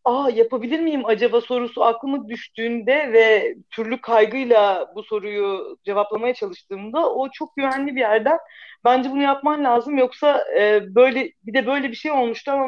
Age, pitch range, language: 40-59, 220-275 Hz, Turkish